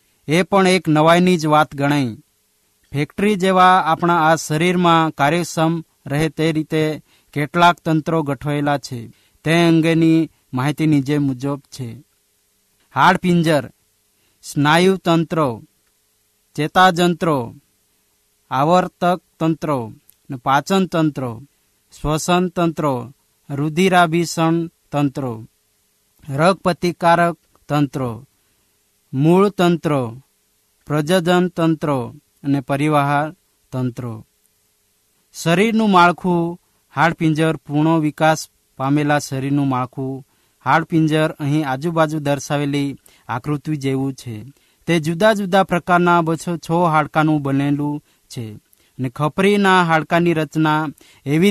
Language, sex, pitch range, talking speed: Hindi, male, 135-170 Hz, 45 wpm